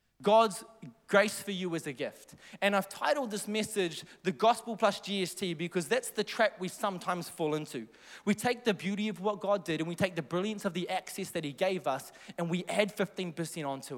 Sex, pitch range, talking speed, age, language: male, 175-220 Hz, 210 wpm, 20-39, English